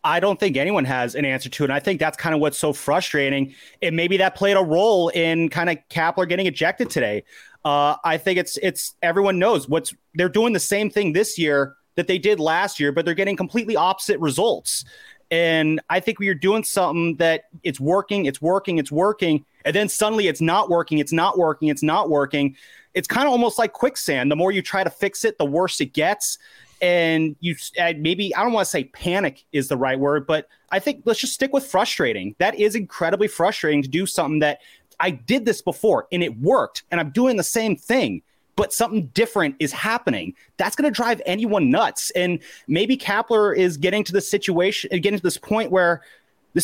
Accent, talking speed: American, 215 wpm